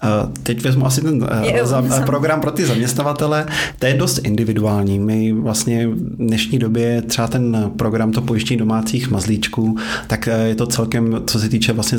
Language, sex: Czech, male